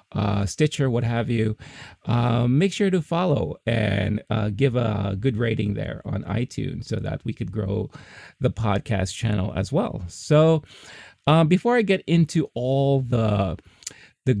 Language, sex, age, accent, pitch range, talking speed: English, male, 30-49, American, 110-140 Hz, 160 wpm